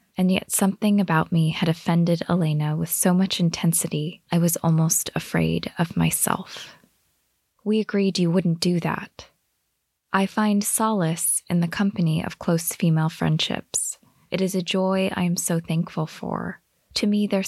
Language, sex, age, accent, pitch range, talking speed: English, female, 20-39, American, 165-185 Hz, 160 wpm